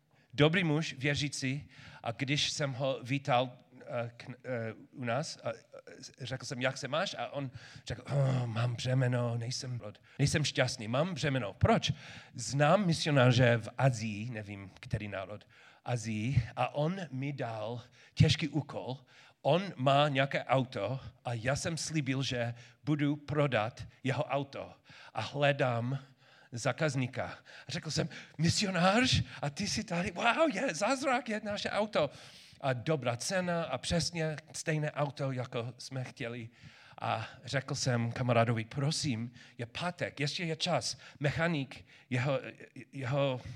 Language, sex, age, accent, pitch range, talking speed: Czech, male, 40-59, native, 125-150 Hz, 135 wpm